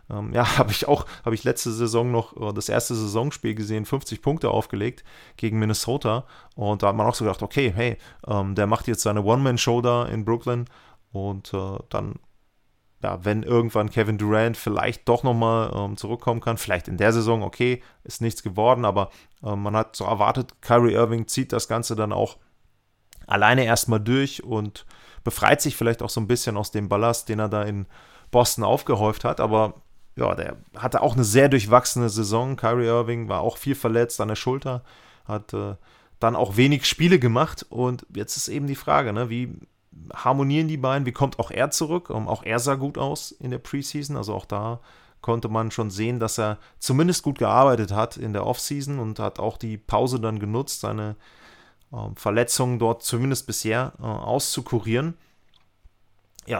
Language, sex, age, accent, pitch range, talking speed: German, male, 30-49, German, 110-125 Hz, 175 wpm